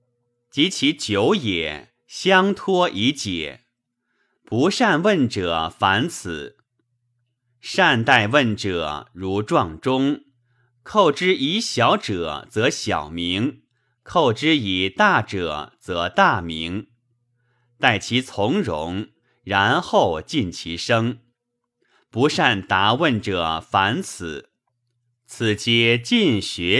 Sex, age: male, 30-49